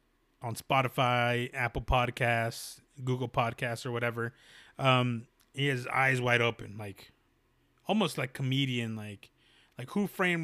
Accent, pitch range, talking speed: American, 125-155 Hz, 125 wpm